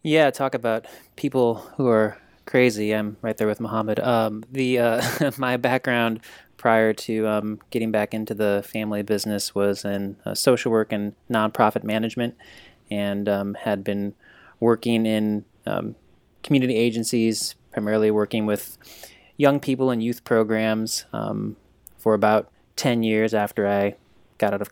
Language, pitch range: English, 105-120 Hz